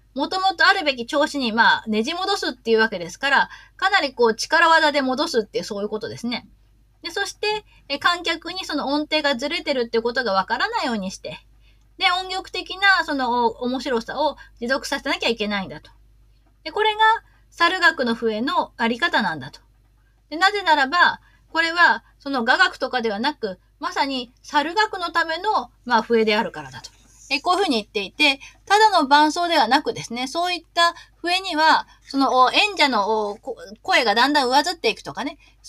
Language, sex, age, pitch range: Japanese, female, 20-39, 225-335 Hz